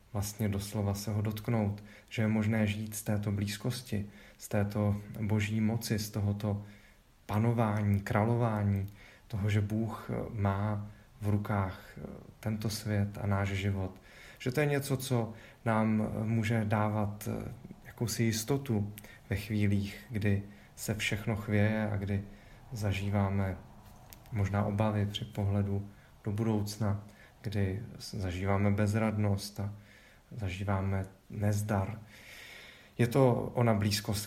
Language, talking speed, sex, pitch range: Czech, 115 wpm, male, 105-120 Hz